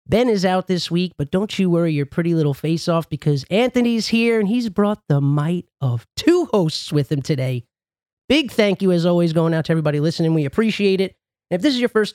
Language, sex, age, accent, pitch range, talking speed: English, male, 30-49, American, 160-220 Hz, 225 wpm